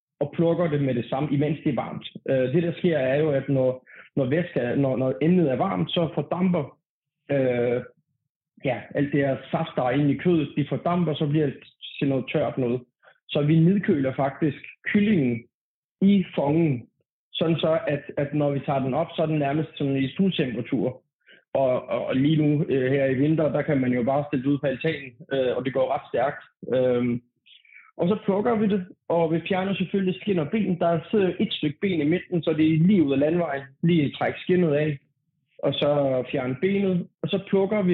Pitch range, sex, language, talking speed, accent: 135-175 Hz, male, Danish, 205 wpm, native